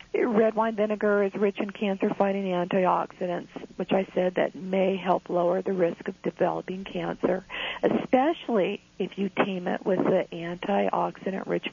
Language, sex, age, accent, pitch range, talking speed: English, female, 50-69, American, 195-225 Hz, 145 wpm